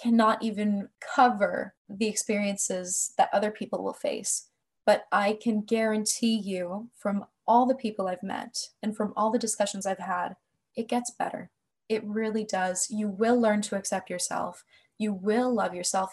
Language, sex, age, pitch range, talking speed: English, female, 20-39, 200-235 Hz, 165 wpm